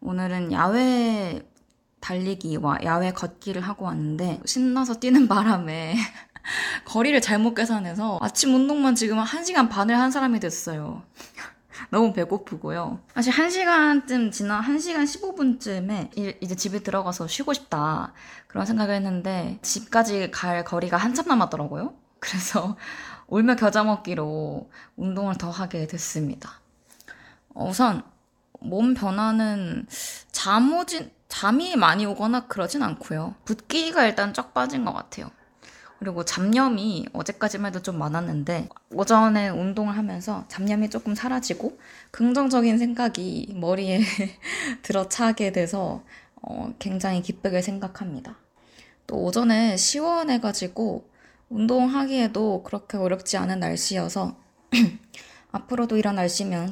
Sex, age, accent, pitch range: female, 20-39, native, 185-245 Hz